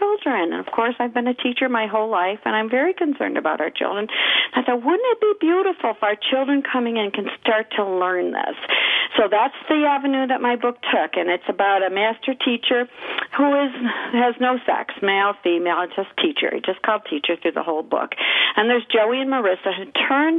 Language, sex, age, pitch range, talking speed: English, female, 50-69, 180-260 Hz, 210 wpm